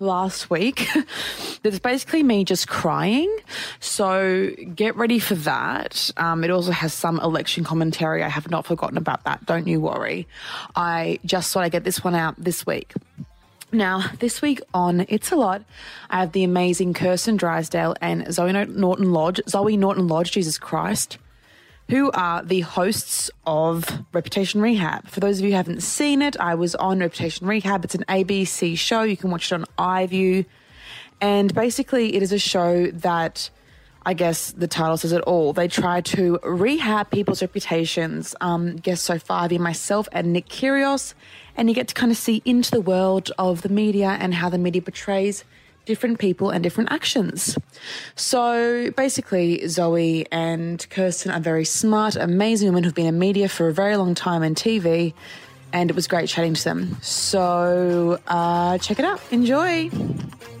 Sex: female